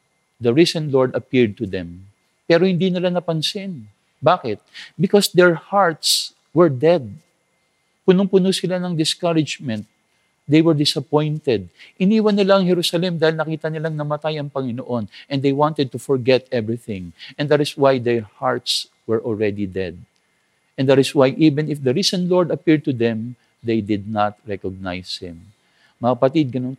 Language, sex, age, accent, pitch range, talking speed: English, male, 50-69, Filipino, 115-160 Hz, 155 wpm